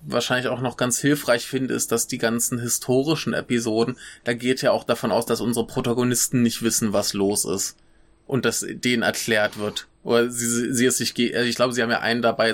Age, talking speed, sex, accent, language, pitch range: 20-39, 210 wpm, male, German, German, 115-125 Hz